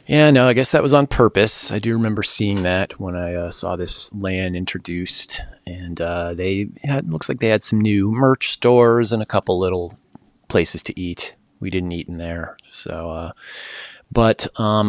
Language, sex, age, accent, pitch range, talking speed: English, male, 30-49, American, 90-115 Hz, 195 wpm